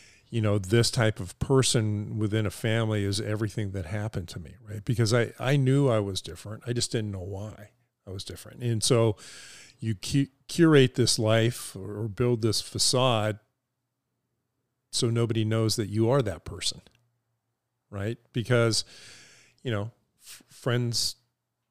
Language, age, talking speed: English, 40-59, 150 wpm